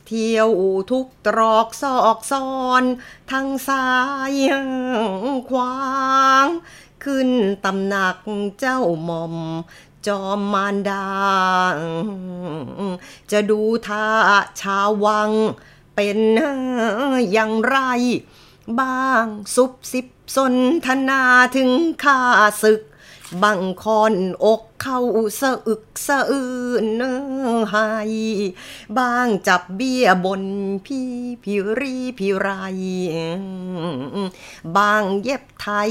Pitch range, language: 195-255 Hz, Thai